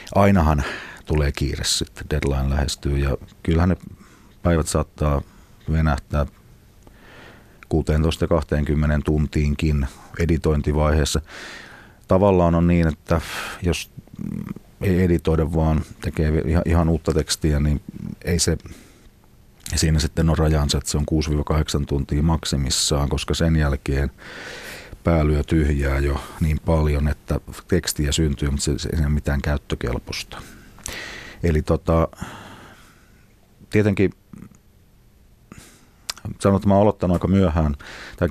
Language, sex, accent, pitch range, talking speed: Finnish, male, native, 75-85 Hz, 105 wpm